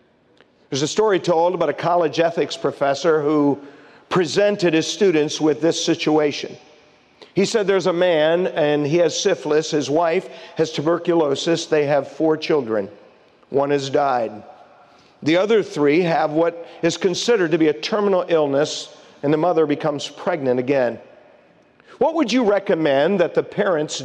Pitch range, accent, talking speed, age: 145-175 Hz, American, 150 wpm, 50-69